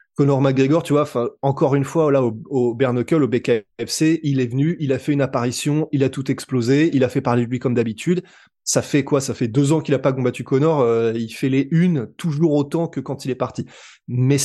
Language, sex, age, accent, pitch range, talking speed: French, male, 20-39, French, 125-160 Hz, 245 wpm